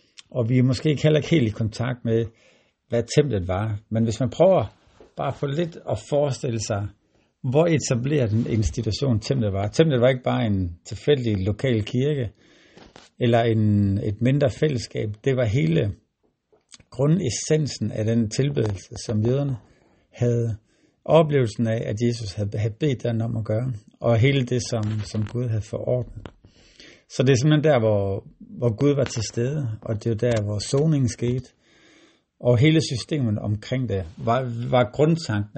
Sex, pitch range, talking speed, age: male, 110-140 Hz, 165 wpm, 60-79